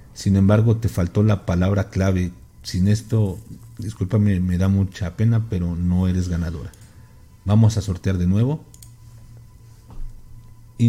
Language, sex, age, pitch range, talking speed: Spanish, male, 50-69, 95-120 Hz, 130 wpm